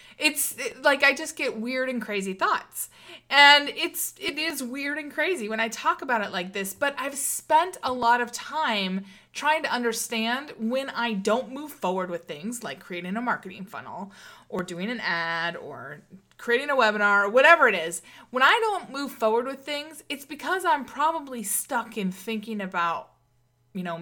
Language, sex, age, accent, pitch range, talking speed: English, female, 20-39, American, 195-280 Hz, 185 wpm